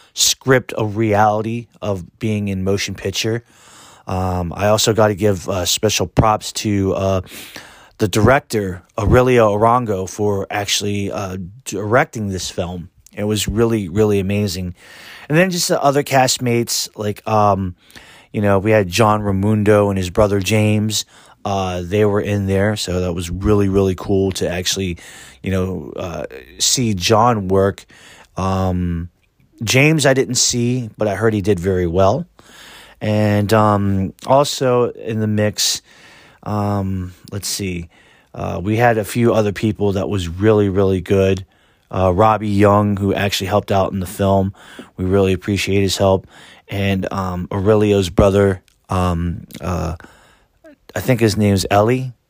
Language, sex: English, male